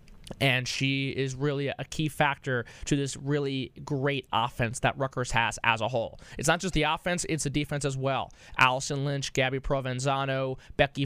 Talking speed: 180 wpm